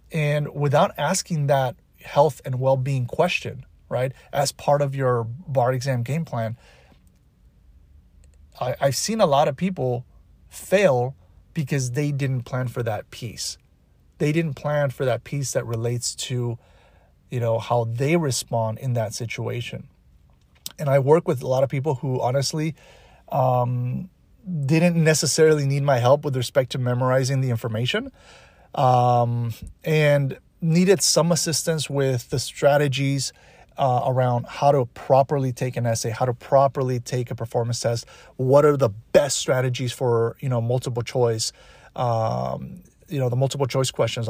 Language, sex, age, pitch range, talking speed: English, male, 30-49, 120-145 Hz, 150 wpm